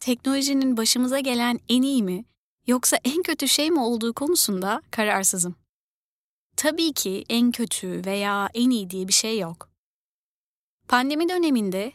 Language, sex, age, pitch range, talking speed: Turkish, female, 30-49, 225-290 Hz, 135 wpm